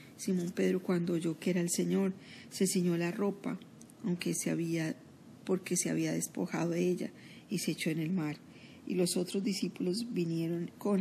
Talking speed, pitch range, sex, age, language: 180 wpm, 170-200 Hz, female, 40-59, Spanish